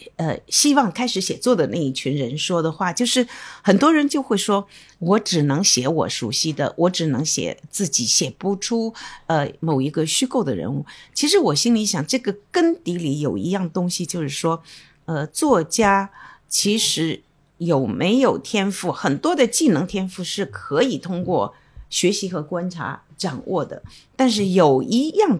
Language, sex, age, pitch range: Chinese, female, 50-69, 150-225 Hz